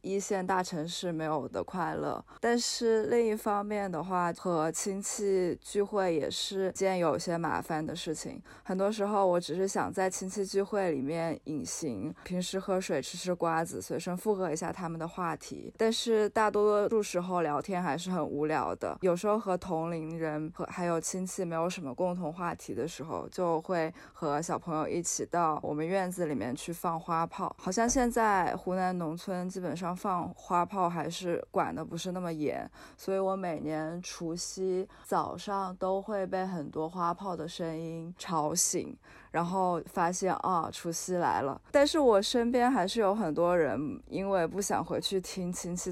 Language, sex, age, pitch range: Chinese, female, 20-39, 165-195 Hz